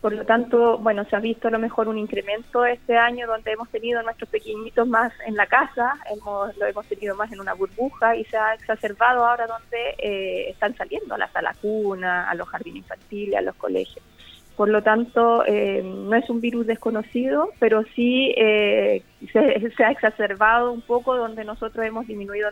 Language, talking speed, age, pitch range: Spanish, 195 wpm, 20-39, 205-235 Hz